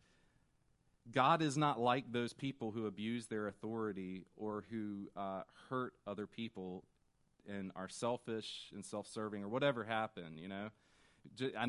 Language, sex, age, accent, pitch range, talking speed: English, male, 30-49, American, 100-130 Hz, 140 wpm